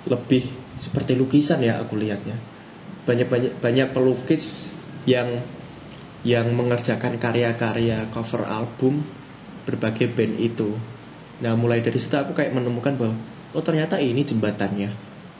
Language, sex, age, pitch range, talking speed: Indonesian, male, 20-39, 115-140 Hz, 120 wpm